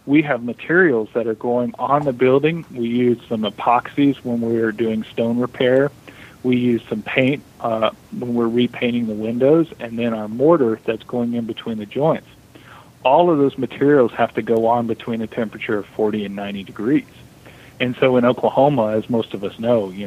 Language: English